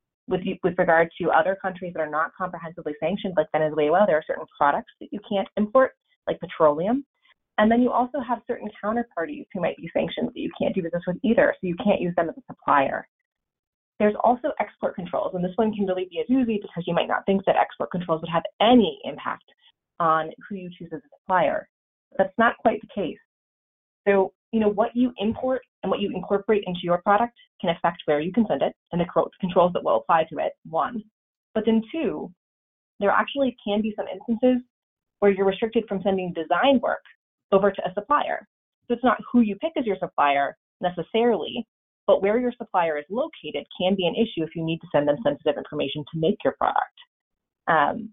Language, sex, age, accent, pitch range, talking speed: English, female, 30-49, American, 170-235 Hz, 210 wpm